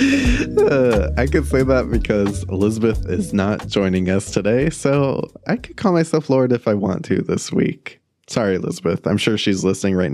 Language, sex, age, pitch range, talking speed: English, male, 20-39, 100-120 Hz, 185 wpm